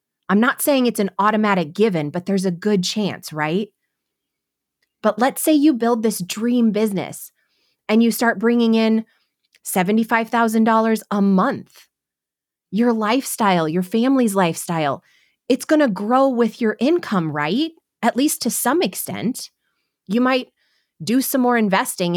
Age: 20-39